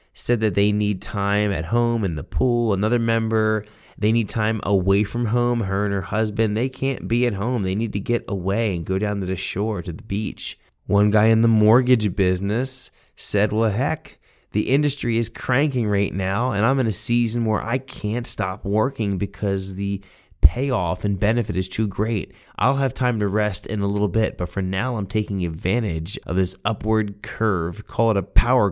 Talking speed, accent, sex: 205 wpm, American, male